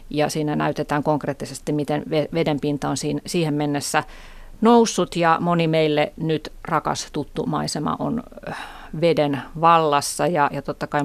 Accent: native